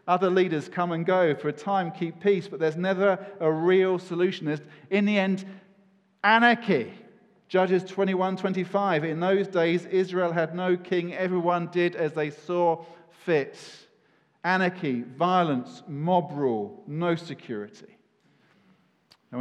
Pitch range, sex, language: 135-180 Hz, male, English